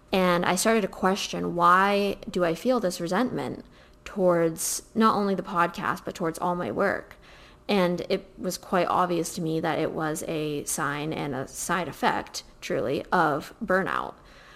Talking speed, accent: 165 wpm, American